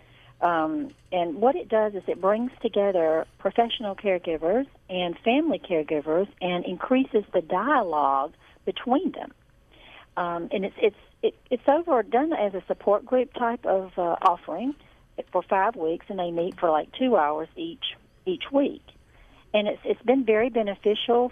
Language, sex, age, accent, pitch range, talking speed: English, female, 50-69, American, 185-230 Hz, 155 wpm